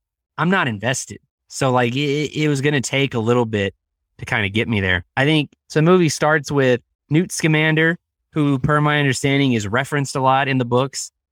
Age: 20-39